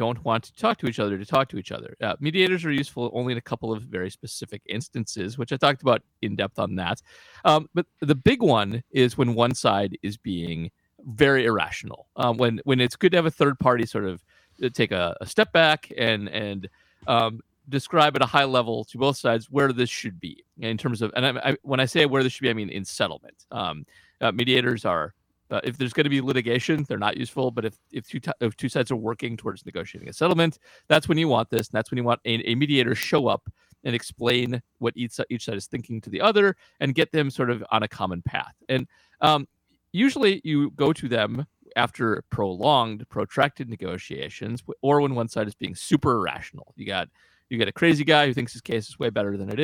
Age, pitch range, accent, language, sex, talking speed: 40-59, 115-140 Hz, American, English, male, 230 wpm